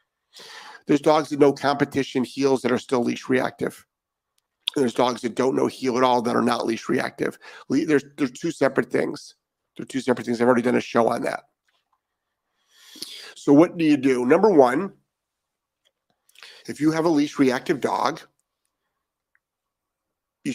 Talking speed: 165 wpm